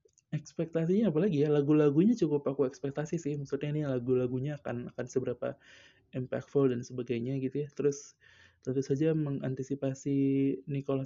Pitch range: 130-155 Hz